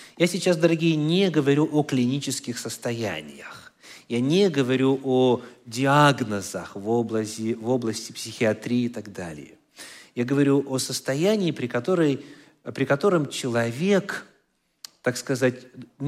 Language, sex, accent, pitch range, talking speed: Russian, male, native, 115-155 Hz, 110 wpm